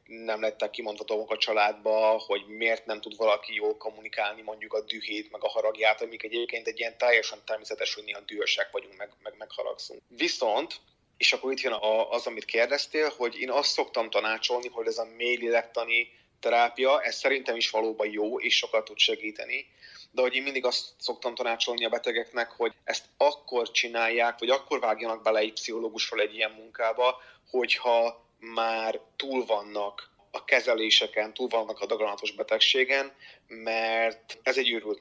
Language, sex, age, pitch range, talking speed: Hungarian, male, 30-49, 110-130 Hz, 165 wpm